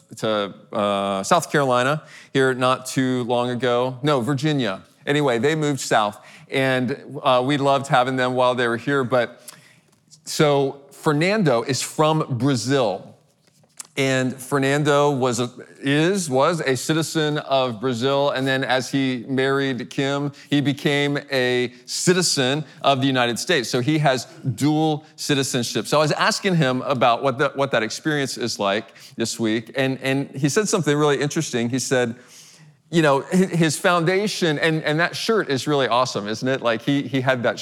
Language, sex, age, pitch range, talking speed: English, male, 40-59, 120-150 Hz, 160 wpm